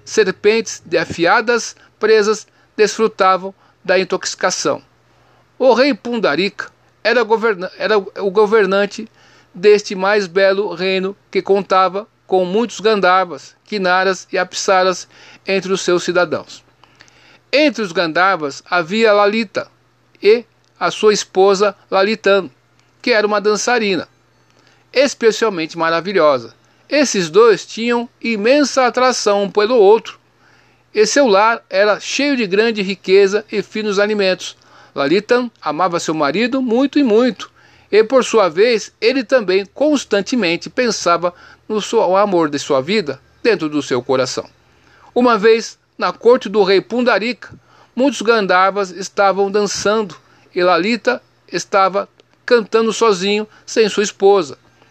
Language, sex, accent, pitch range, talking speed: Portuguese, male, Brazilian, 190-235 Hz, 120 wpm